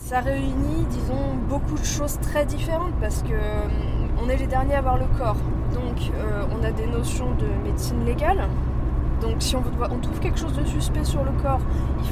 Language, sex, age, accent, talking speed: French, female, 20-39, French, 200 wpm